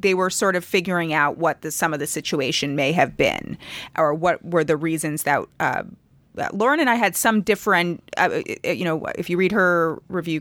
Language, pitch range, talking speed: English, 150-180 Hz, 210 wpm